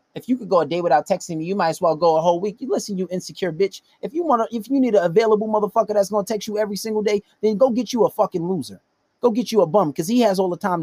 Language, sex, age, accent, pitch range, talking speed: English, male, 30-49, American, 145-205 Hz, 315 wpm